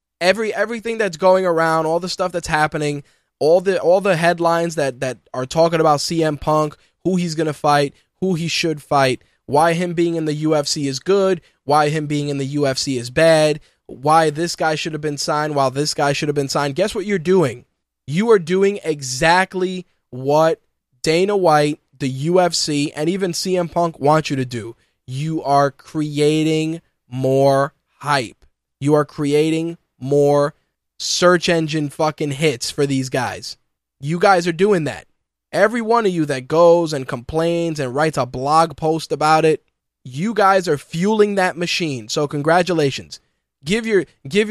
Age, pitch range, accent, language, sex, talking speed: 20-39, 145-185 Hz, American, English, male, 175 wpm